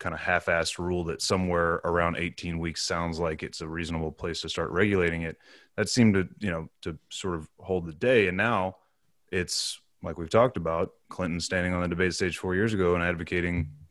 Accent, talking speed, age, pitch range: American, 205 wpm, 30-49, 85-95 Hz